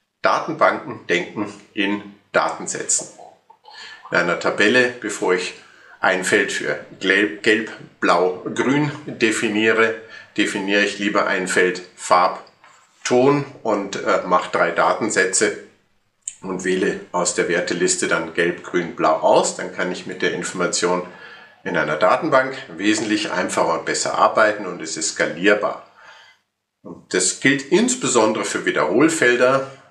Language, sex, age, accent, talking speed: German, male, 50-69, German, 120 wpm